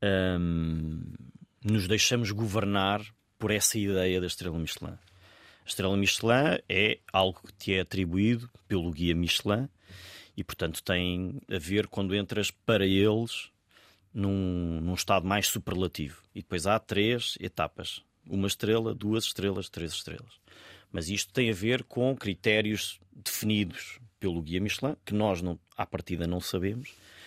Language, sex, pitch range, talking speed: Portuguese, male, 95-110 Hz, 145 wpm